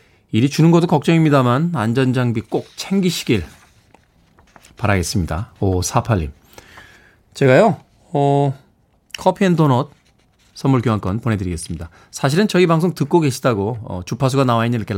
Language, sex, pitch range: Korean, male, 110-170 Hz